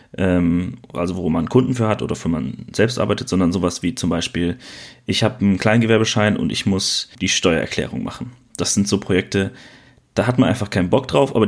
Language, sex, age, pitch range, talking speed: German, male, 30-49, 100-125 Hz, 200 wpm